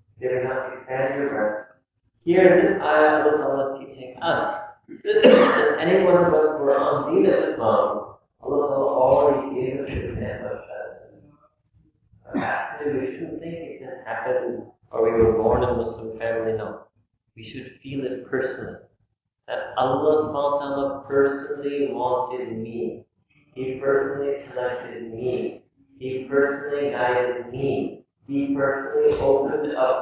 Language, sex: English, male